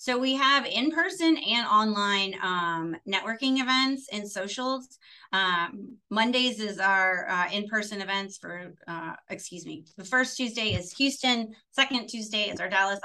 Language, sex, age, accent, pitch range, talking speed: English, female, 30-49, American, 180-215 Hz, 145 wpm